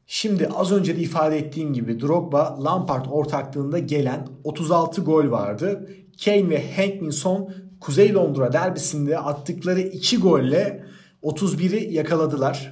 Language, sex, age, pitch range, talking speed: Turkish, male, 40-59, 140-170 Hz, 115 wpm